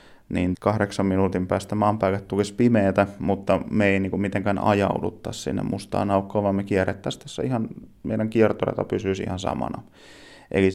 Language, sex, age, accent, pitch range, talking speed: Finnish, male, 30-49, native, 95-105 Hz, 155 wpm